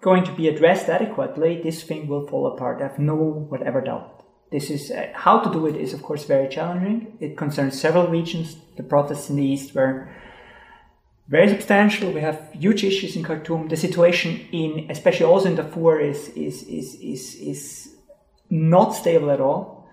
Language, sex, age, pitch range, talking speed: English, male, 30-49, 140-170 Hz, 185 wpm